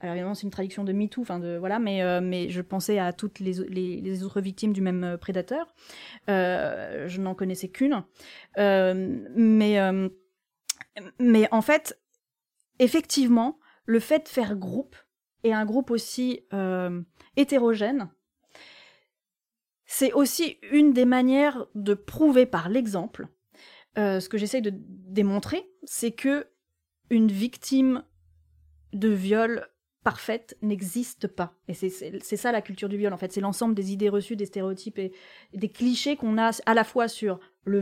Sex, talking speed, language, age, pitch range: female, 160 wpm, French, 30-49, 185-240 Hz